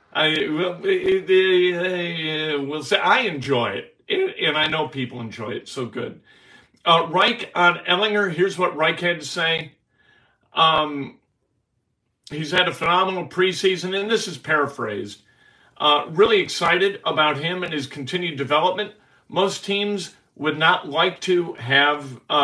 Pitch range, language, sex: 140-180 Hz, English, male